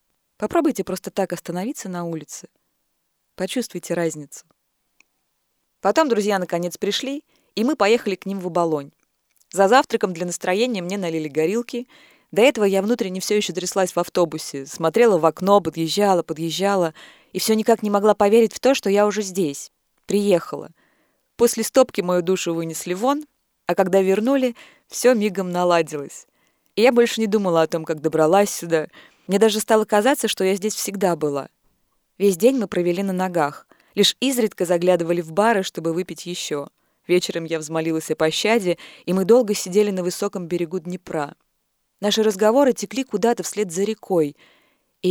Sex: female